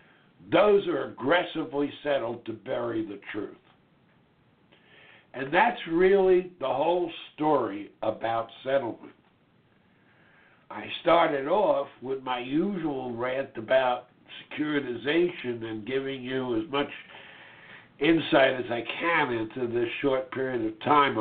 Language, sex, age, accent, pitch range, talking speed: English, male, 60-79, American, 125-160 Hz, 115 wpm